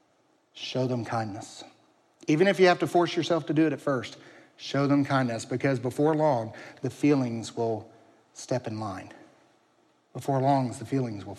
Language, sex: English, male